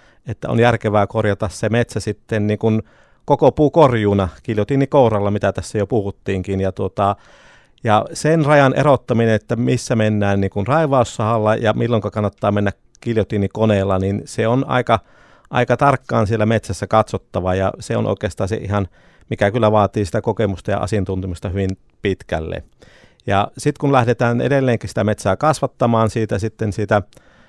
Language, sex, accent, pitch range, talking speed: Finnish, male, native, 100-120 Hz, 145 wpm